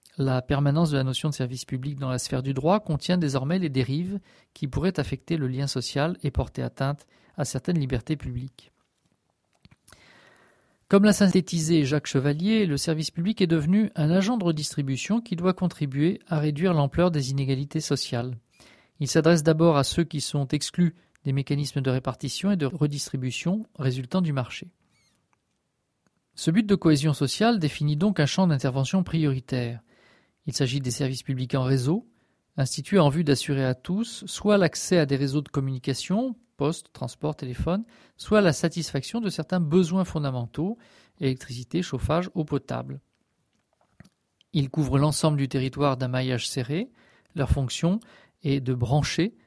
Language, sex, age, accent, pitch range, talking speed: French, male, 40-59, French, 135-175 Hz, 155 wpm